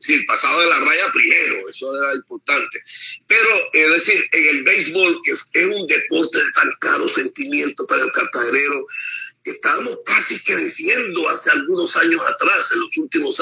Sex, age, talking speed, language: male, 50-69, 175 wpm, Spanish